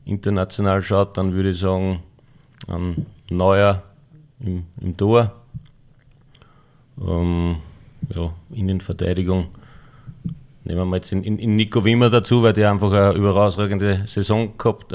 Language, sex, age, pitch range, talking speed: German, male, 40-59, 95-120 Hz, 120 wpm